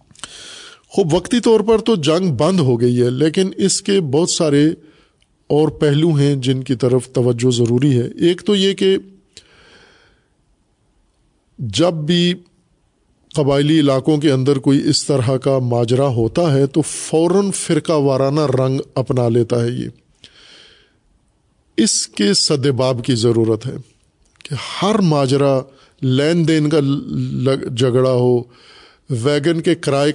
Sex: male